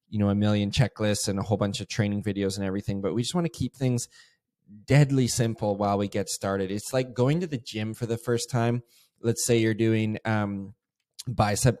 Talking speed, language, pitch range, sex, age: 215 wpm, English, 100-115 Hz, male, 20-39